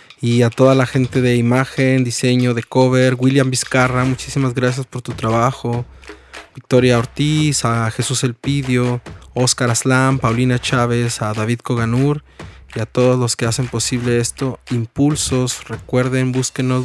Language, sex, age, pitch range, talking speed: Spanish, male, 20-39, 115-135 Hz, 145 wpm